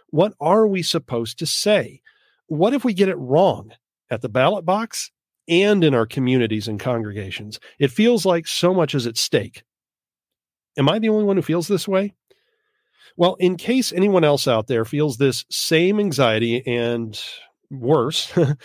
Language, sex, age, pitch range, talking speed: English, male, 40-59, 125-180 Hz, 165 wpm